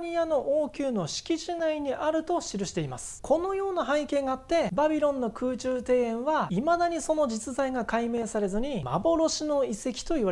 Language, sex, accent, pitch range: Japanese, male, native, 200-330 Hz